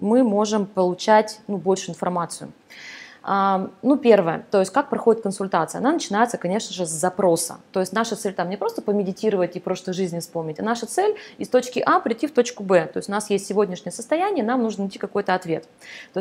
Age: 20-39